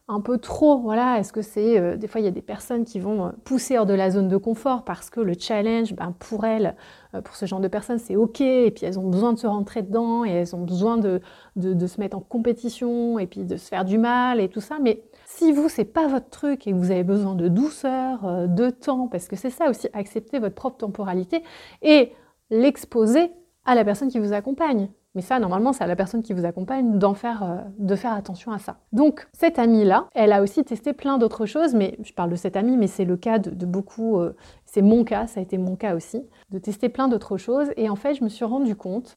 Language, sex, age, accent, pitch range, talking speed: French, female, 30-49, French, 195-245 Hz, 250 wpm